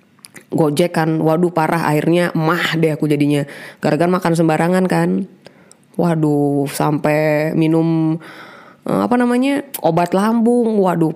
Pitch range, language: 160-205 Hz, Indonesian